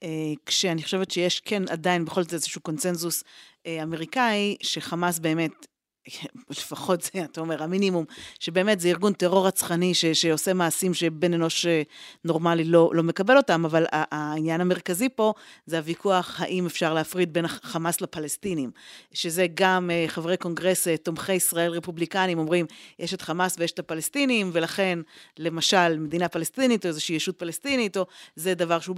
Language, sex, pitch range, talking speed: Hebrew, female, 170-210 Hz, 155 wpm